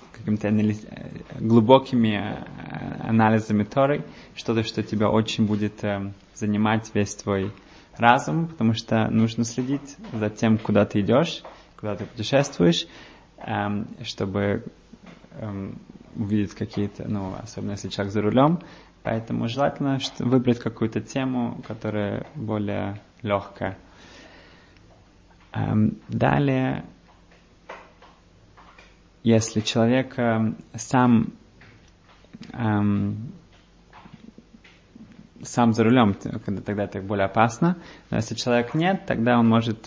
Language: Russian